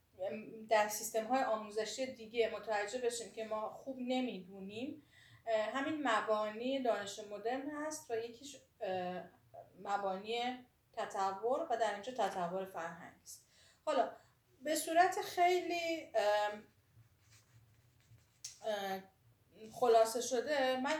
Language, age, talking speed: Persian, 30-49, 90 wpm